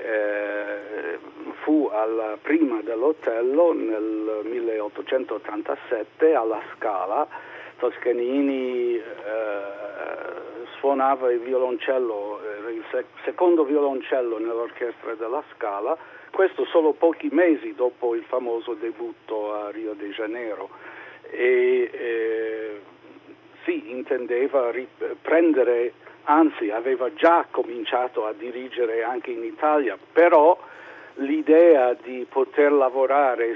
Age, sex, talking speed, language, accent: 60-79, male, 95 wpm, Italian, native